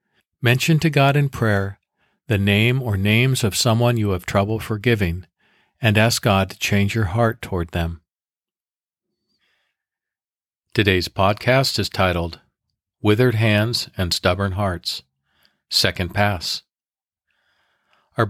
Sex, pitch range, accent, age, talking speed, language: male, 95-120 Hz, American, 50-69, 120 wpm, English